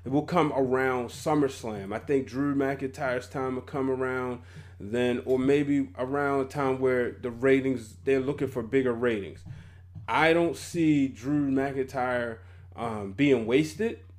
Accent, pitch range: American, 115-150 Hz